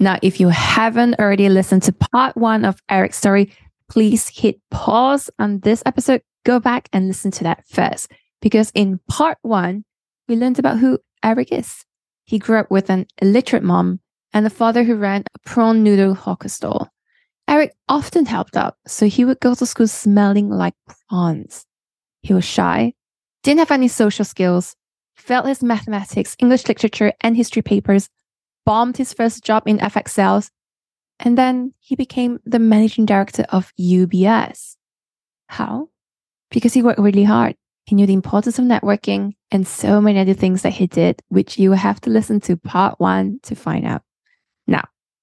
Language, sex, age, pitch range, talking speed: English, female, 10-29, 190-240 Hz, 170 wpm